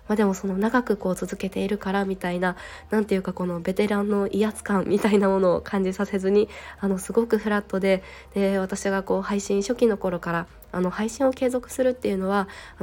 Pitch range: 185-220 Hz